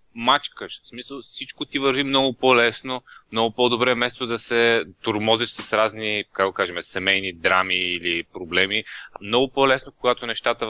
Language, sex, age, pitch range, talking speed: Bulgarian, male, 20-39, 95-115 Hz, 140 wpm